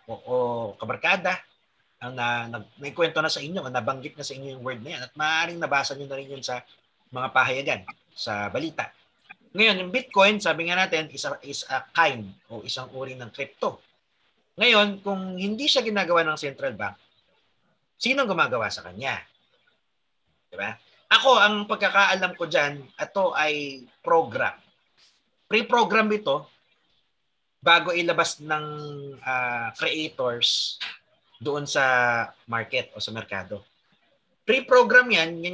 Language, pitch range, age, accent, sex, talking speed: Filipino, 130-185 Hz, 30-49, native, male, 145 wpm